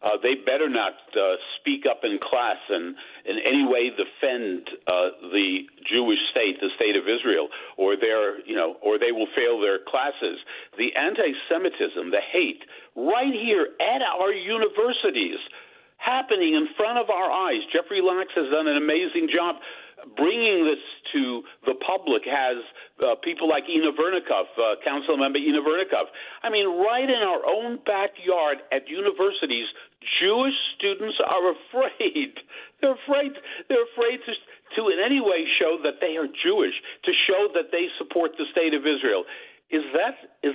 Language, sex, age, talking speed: English, male, 50-69, 155 wpm